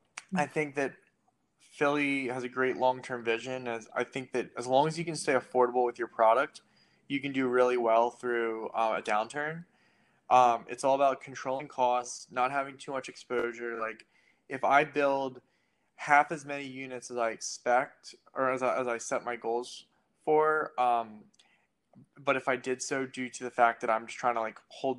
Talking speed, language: 190 wpm, English